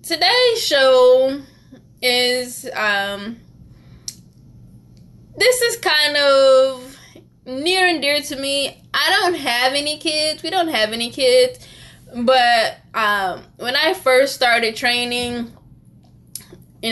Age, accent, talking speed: 10-29, American, 110 wpm